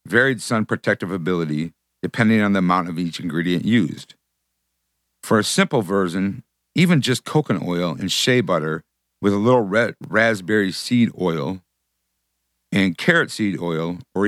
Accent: American